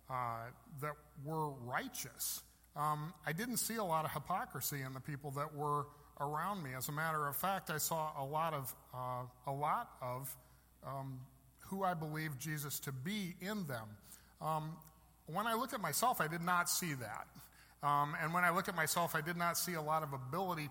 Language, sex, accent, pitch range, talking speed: English, male, American, 150-195 Hz, 195 wpm